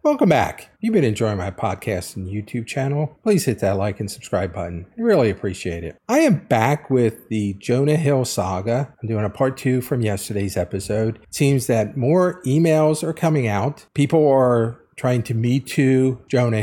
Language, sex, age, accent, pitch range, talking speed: English, male, 50-69, American, 120-155 Hz, 190 wpm